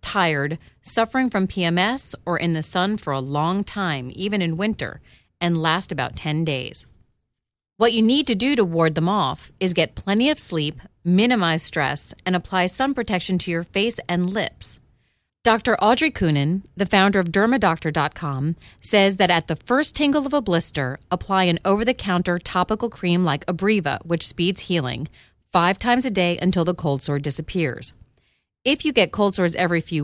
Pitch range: 160-205 Hz